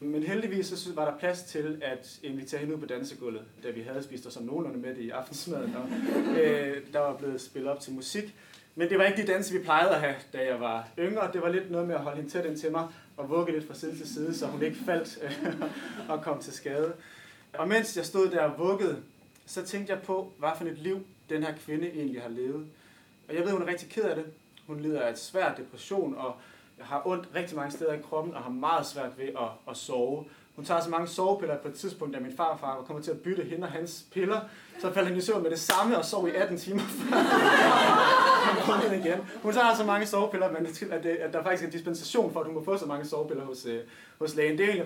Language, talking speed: Danish, 250 wpm